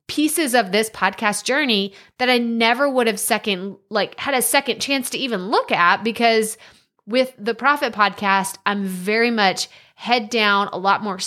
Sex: female